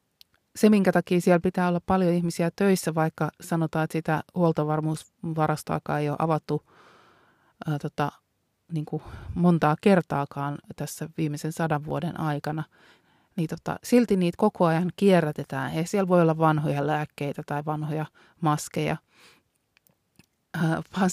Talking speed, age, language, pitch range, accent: 110 wpm, 30-49, Finnish, 155-185 Hz, native